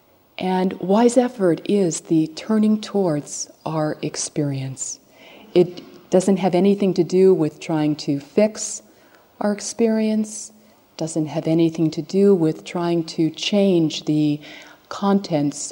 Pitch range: 150-190 Hz